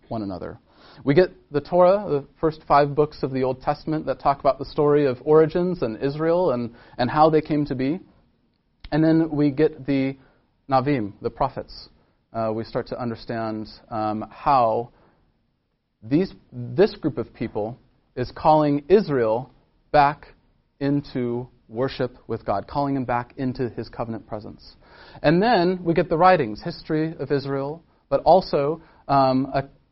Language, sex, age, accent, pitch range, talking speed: English, male, 40-59, American, 125-160 Hz, 155 wpm